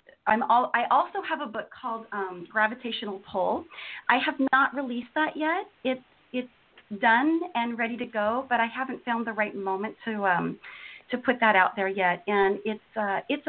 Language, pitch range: English, 205-255 Hz